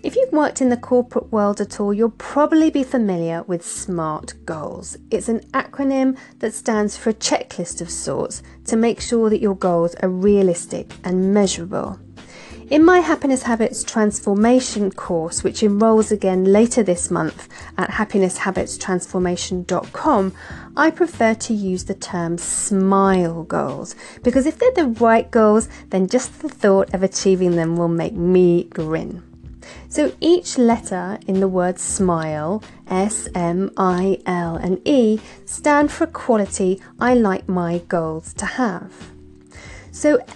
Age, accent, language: 30-49, British, English